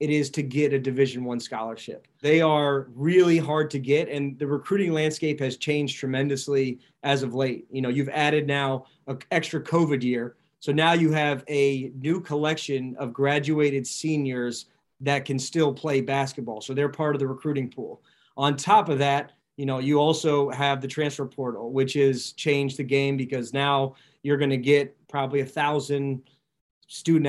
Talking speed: 180 wpm